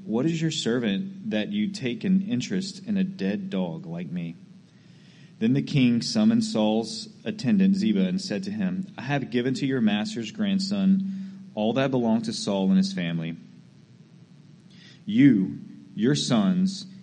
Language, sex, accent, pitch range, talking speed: English, male, American, 160-200 Hz, 155 wpm